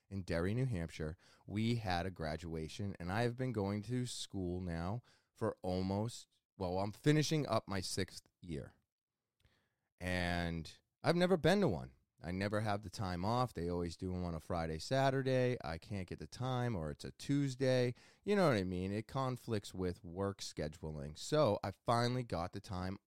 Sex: male